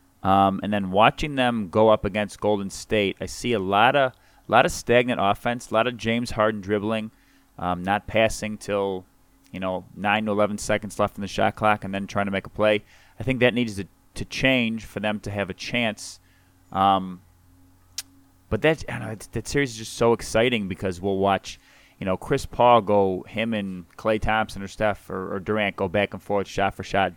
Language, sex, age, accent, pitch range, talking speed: English, male, 30-49, American, 95-110 Hz, 215 wpm